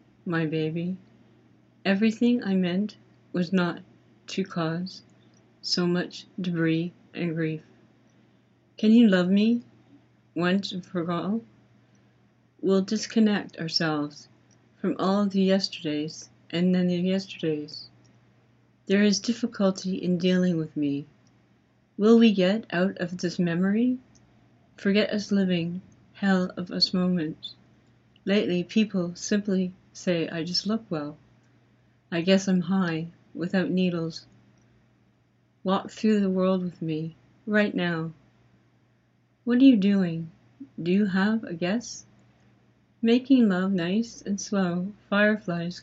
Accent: American